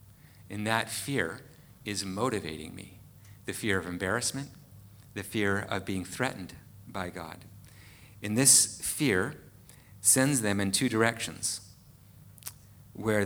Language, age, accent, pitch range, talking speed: English, 50-69, American, 100-120 Hz, 120 wpm